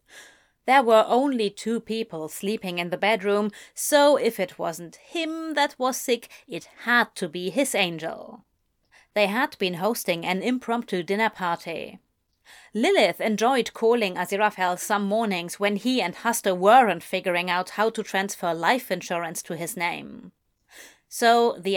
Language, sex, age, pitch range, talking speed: English, female, 30-49, 180-235 Hz, 150 wpm